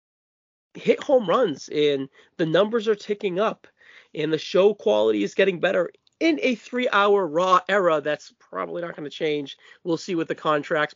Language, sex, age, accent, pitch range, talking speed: English, male, 30-49, American, 155-195 Hz, 170 wpm